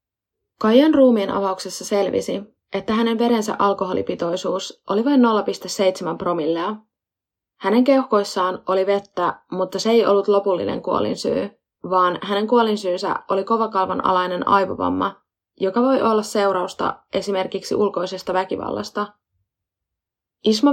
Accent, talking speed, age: native, 105 wpm, 20-39